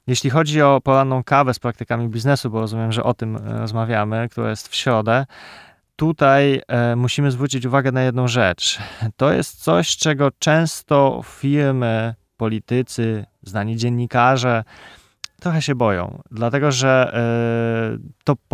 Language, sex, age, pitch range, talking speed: Polish, male, 20-39, 115-135 Hz, 130 wpm